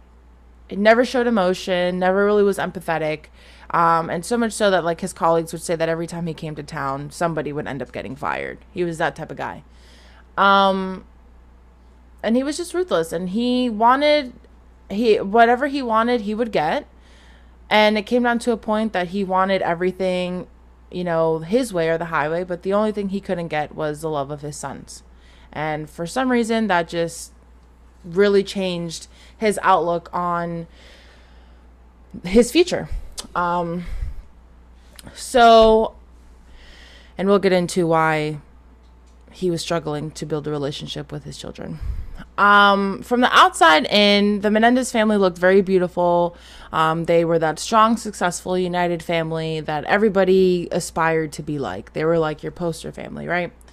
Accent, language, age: American, English, 20-39